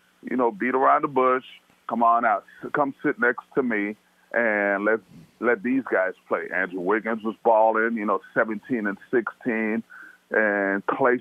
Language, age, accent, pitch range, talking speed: English, 30-49, American, 110-155 Hz, 165 wpm